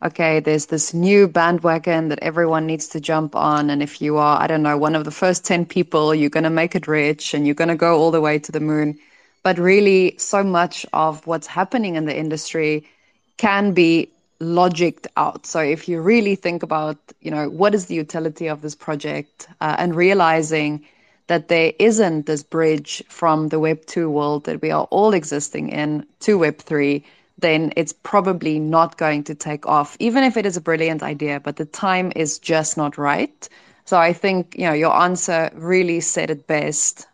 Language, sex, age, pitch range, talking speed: English, female, 20-39, 155-180 Hz, 200 wpm